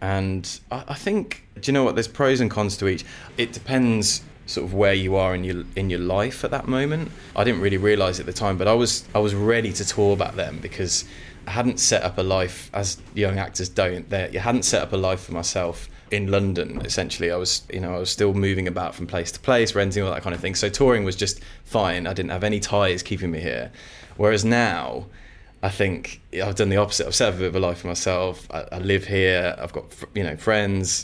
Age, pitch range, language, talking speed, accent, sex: 20-39, 90-105 Hz, English, 245 wpm, British, male